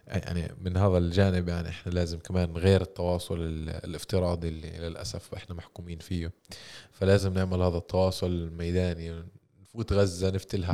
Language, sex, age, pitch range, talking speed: Arabic, male, 20-39, 90-105 Hz, 130 wpm